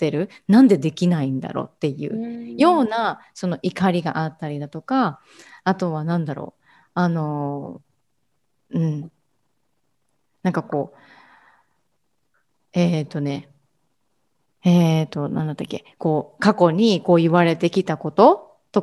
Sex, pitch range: female, 150-195 Hz